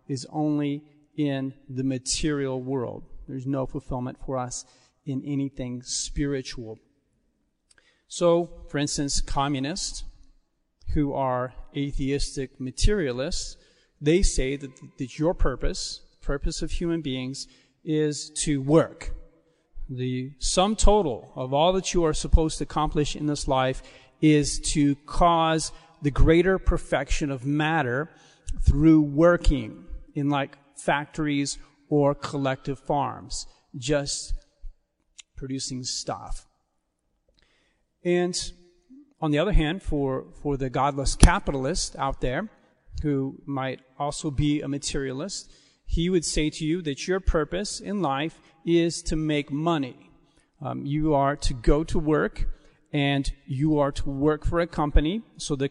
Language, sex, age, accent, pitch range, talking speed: English, male, 40-59, American, 135-160 Hz, 125 wpm